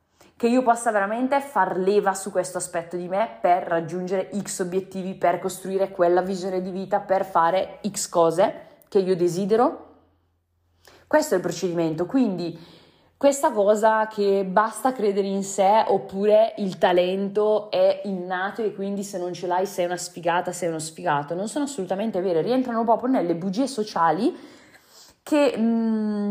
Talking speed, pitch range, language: 155 wpm, 170-225 Hz, Italian